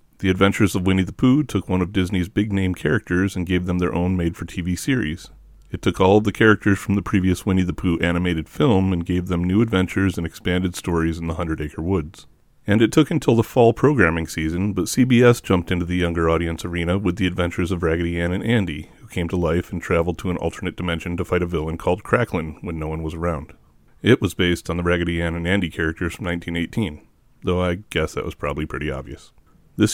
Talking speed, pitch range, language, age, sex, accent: 225 wpm, 85-100 Hz, English, 30-49, male, American